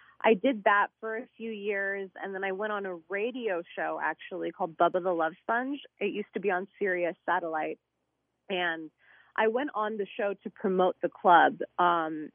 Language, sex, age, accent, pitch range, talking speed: English, female, 30-49, American, 175-210 Hz, 190 wpm